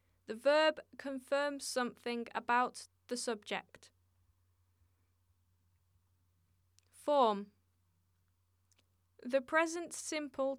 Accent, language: British, English